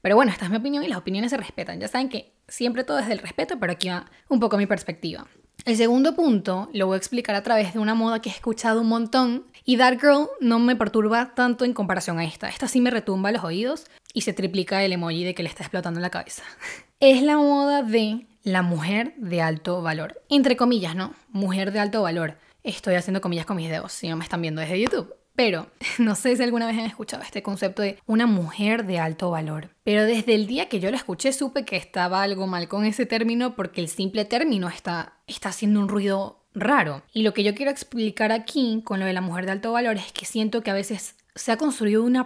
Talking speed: 240 wpm